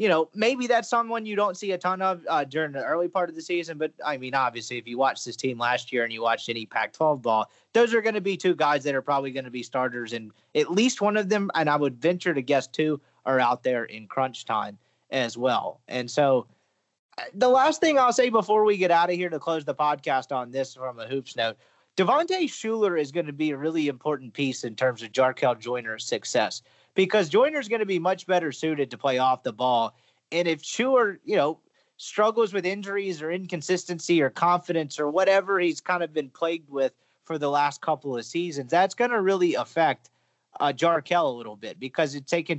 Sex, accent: male, American